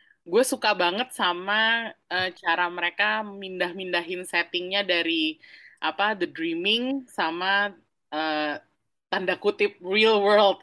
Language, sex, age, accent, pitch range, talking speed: Indonesian, female, 20-39, native, 180-300 Hz, 105 wpm